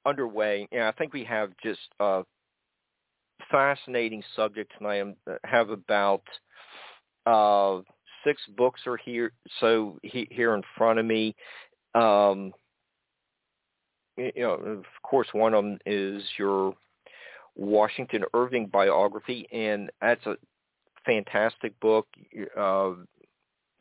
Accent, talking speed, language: American, 115 wpm, English